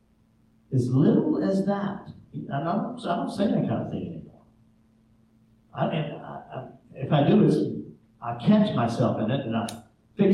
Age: 50-69